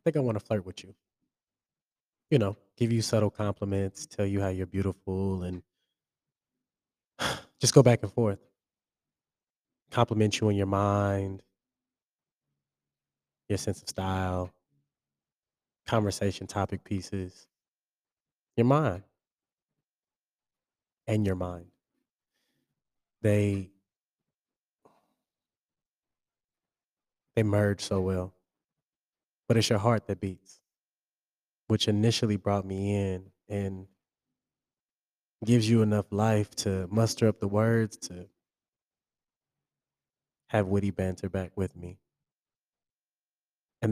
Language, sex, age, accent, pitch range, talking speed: English, male, 20-39, American, 95-110 Hz, 105 wpm